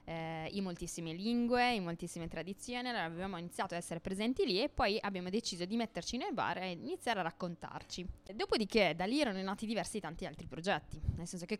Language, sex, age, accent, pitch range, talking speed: Italian, female, 20-39, native, 170-225 Hz, 195 wpm